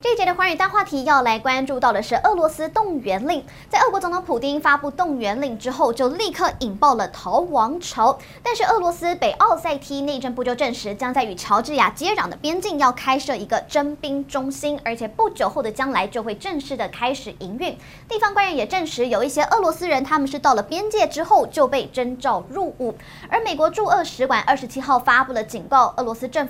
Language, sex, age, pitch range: Chinese, male, 20-39, 245-345 Hz